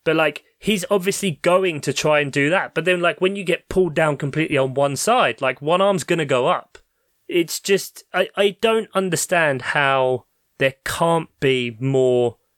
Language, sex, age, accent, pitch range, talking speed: English, male, 20-39, British, 125-160 Hz, 190 wpm